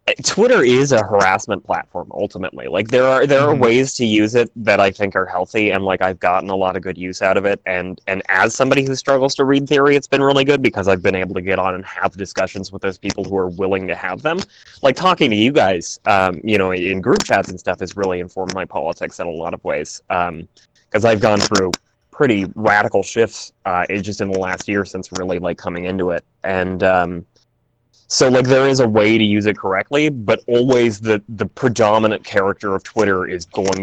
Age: 20-39